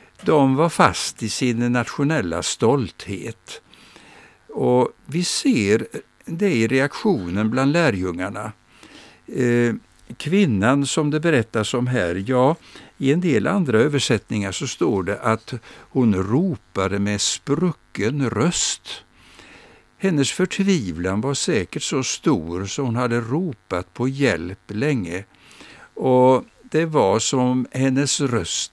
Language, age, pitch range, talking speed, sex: Swedish, 60-79, 105-150 Hz, 115 wpm, male